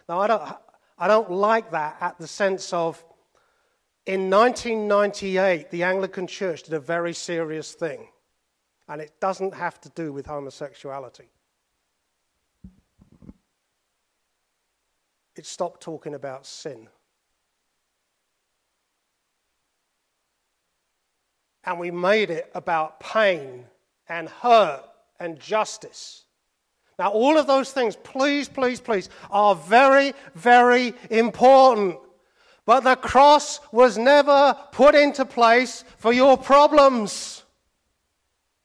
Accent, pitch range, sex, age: British, 175-275 Hz, male, 40-59